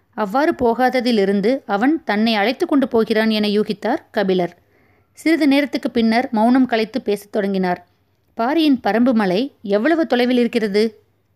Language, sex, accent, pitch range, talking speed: Tamil, female, native, 200-255 Hz, 110 wpm